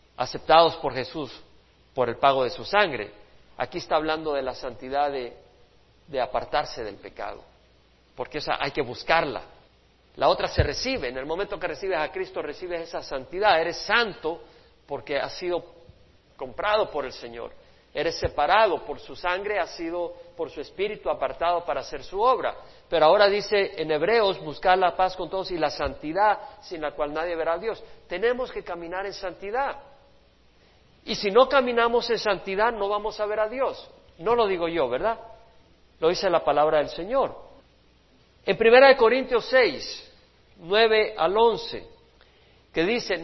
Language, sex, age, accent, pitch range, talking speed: Spanish, male, 50-69, Mexican, 160-235 Hz, 170 wpm